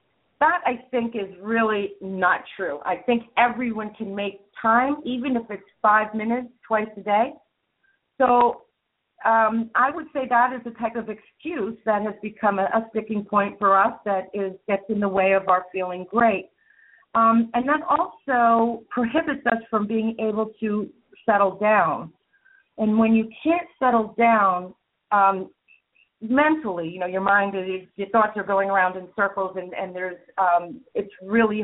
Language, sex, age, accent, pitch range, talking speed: English, female, 50-69, American, 200-255 Hz, 170 wpm